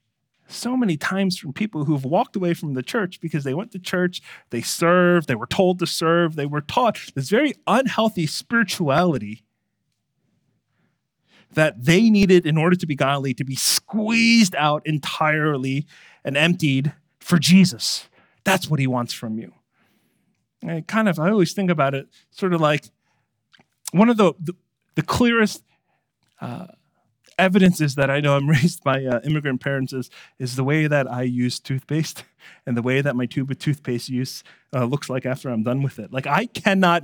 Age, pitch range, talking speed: 30-49, 135-180 Hz, 180 wpm